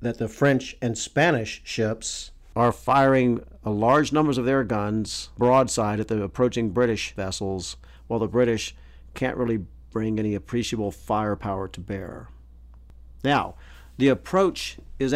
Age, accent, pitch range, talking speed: 50-69, American, 95-125 Hz, 140 wpm